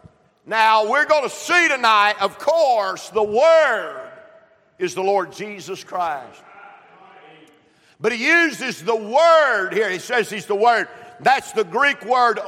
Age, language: 50-69, English